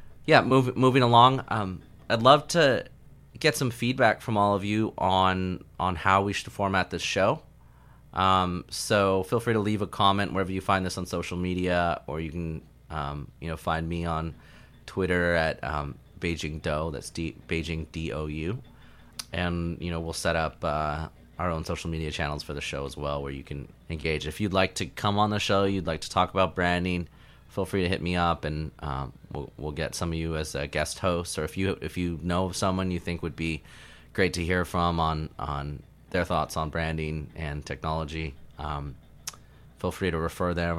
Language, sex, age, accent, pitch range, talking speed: English, male, 30-49, American, 80-95 Hz, 200 wpm